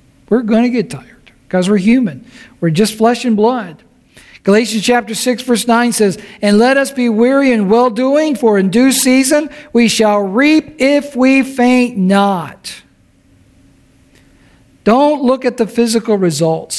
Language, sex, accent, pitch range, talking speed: English, male, American, 165-240 Hz, 155 wpm